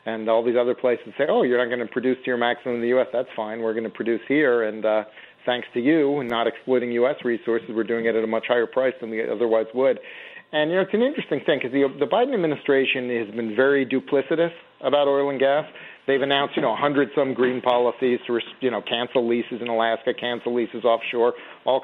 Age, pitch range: 40-59, 120-145 Hz